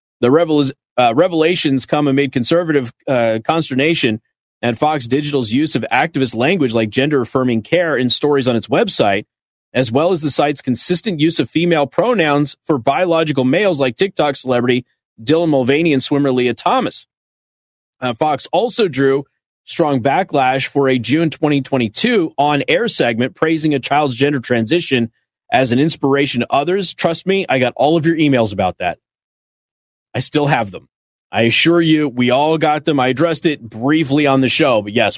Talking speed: 165 wpm